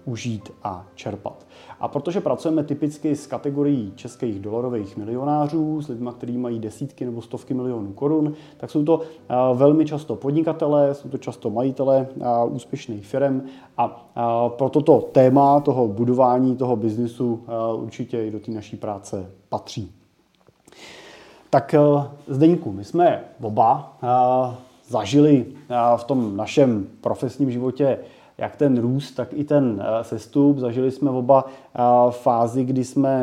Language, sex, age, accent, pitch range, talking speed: Czech, male, 30-49, native, 120-150 Hz, 130 wpm